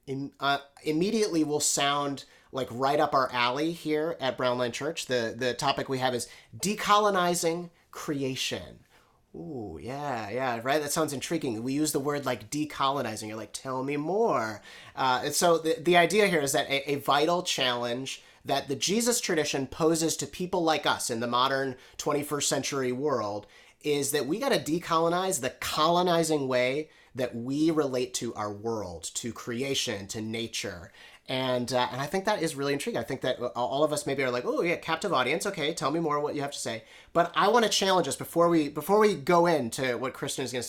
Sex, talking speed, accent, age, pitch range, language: male, 200 wpm, American, 30-49, 125-160 Hz, English